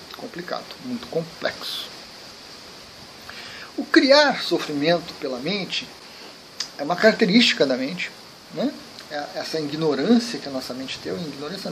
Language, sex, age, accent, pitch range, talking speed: Portuguese, male, 40-59, Brazilian, 145-210 Hz, 115 wpm